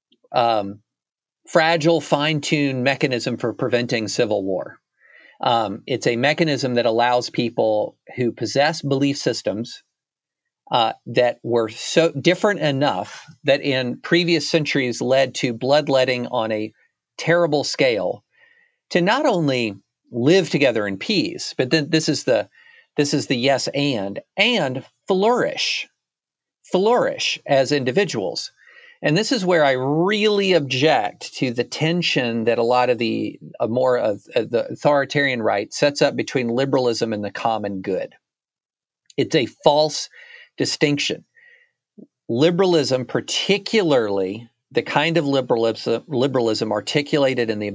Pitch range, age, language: 120-165 Hz, 50-69, English